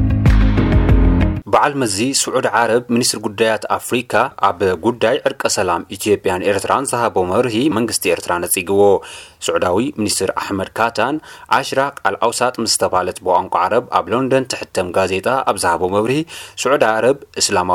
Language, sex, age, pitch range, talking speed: Amharic, male, 30-49, 95-125 Hz, 135 wpm